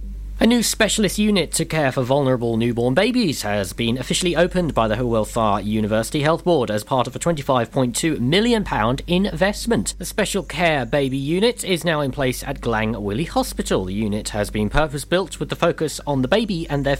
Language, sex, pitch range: English, male, 125-175 Hz